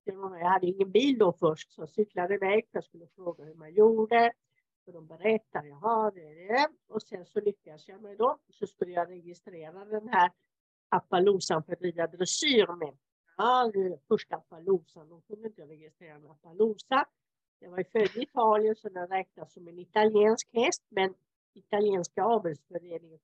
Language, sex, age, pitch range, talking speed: English, female, 50-69, 170-220 Hz, 165 wpm